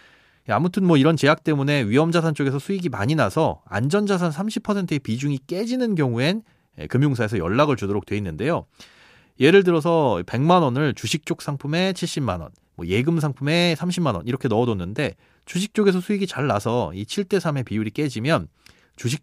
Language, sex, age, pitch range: Korean, male, 30-49, 110-165 Hz